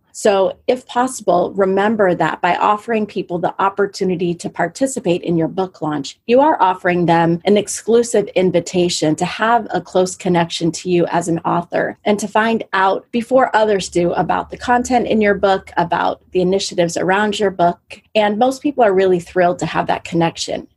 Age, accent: 30-49, American